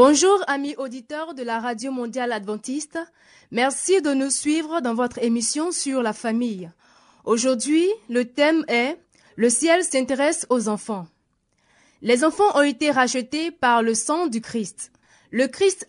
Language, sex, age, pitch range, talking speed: French, female, 20-39, 230-310 Hz, 145 wpm